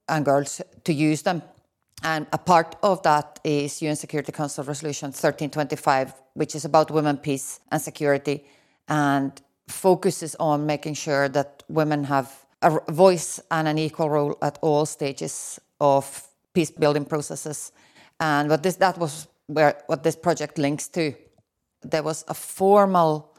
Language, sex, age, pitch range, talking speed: English, female, 30-49, 145-160 Hz, 150 wpm